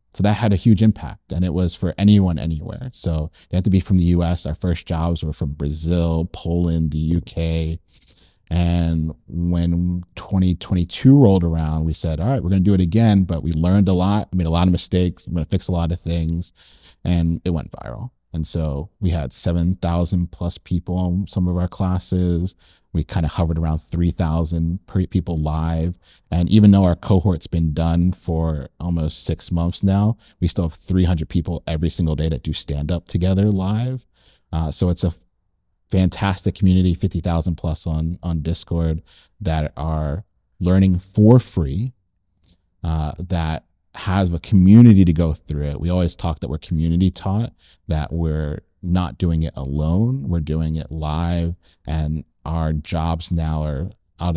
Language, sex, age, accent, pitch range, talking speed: English, male, 30-49, American, 80-90 Hz, 175 wpm